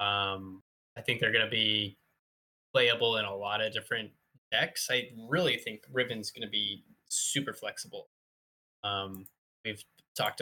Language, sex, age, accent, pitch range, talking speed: English, male, 10-29, American, 100-120 Hz, 150 wpm